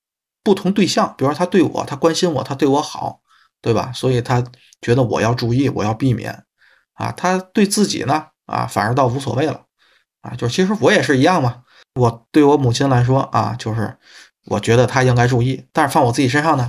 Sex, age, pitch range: male, 20-39, 120-165 Hz